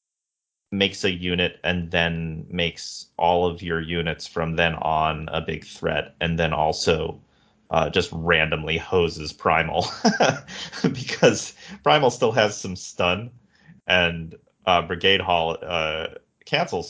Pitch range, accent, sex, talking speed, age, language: 85-105 Hz, American, male, 130 wpm, 30-49, English